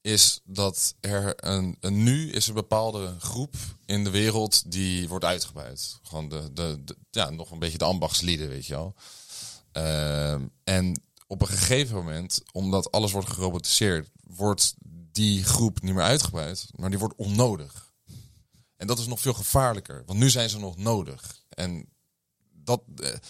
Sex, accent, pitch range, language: male, Dutch, 85-110 Hz, Dutch